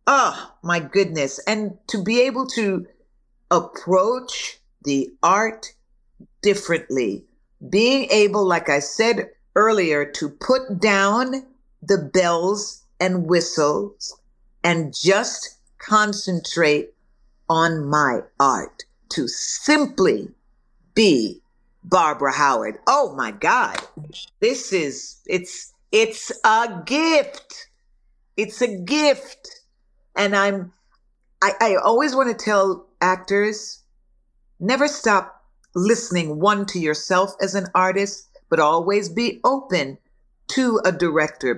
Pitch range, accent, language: 175-230 Hz, American, English